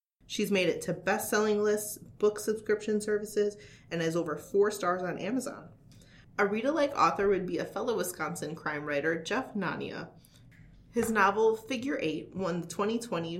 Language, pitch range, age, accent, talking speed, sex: English, 160-210 Hz, 30-49, American, 160 wpm, female